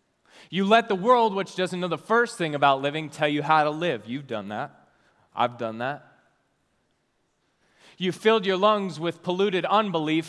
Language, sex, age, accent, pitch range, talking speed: English, male, 20-39, American, 130-175 Hz, 175 wpm